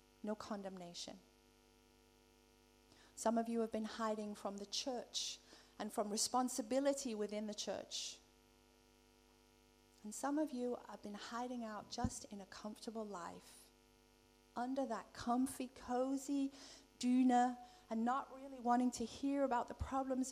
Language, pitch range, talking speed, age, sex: Danish, 210-250 Hz, 130 wpm, 40-59, female